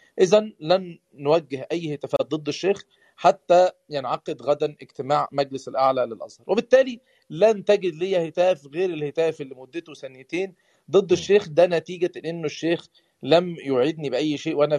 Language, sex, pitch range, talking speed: Arabic, male, 140-185 Hz, 145 wpm